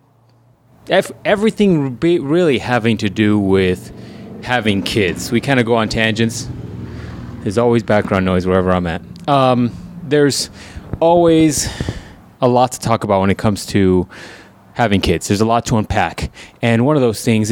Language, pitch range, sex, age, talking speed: English, 95-120 Hz, male, 20-39, 155 wpm